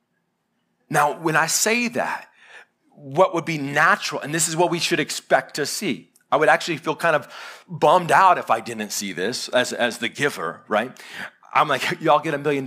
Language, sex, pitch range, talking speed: English, male, 175-250 Hz, 200 wpm